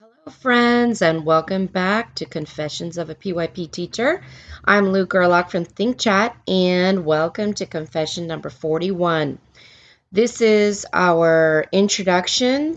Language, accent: English, American